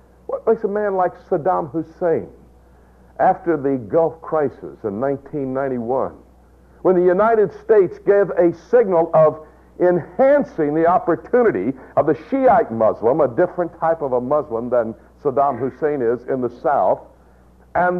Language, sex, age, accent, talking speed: English, male, 60-79, American, 140 wpm